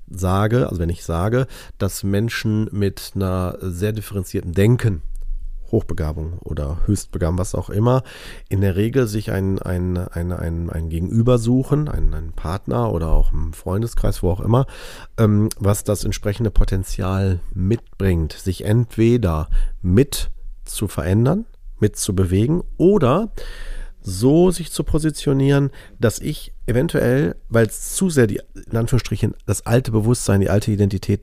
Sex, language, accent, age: male, German, German, 40-59